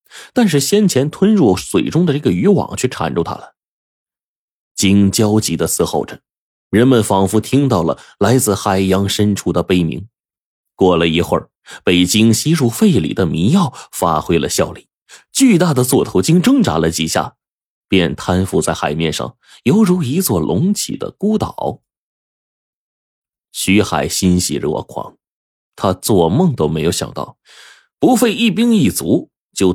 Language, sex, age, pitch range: Chinese, male, 30-49, 90-140 Hz